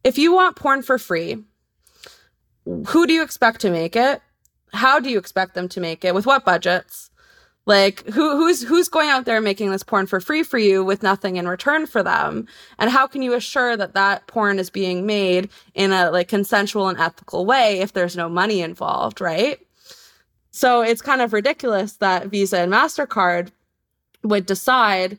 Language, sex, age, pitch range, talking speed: English, female, 20-39, 185-230 Hz, 190 wpm